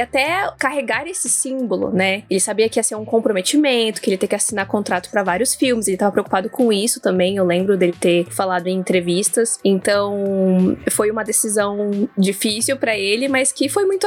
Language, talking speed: Portuguese, 195 wpm